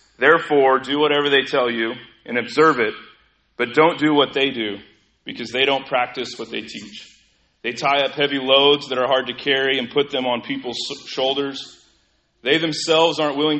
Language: English